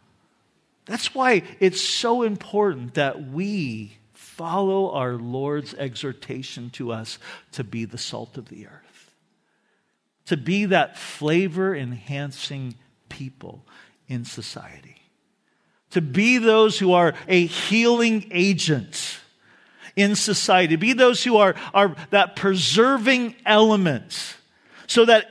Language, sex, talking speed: English, male, 115 wpm